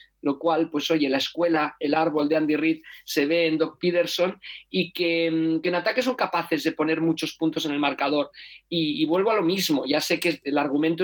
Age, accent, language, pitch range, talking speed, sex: 40-59, Spanish, Spanish, 160-180 Hz, 225 wpm, male